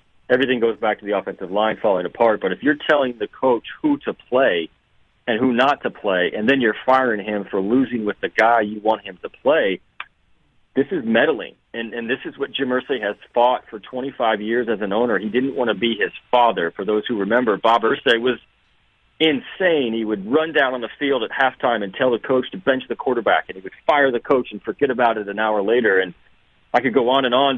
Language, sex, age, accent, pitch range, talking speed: English, male, 40-59, American, 110-135 Hz, 235 wpm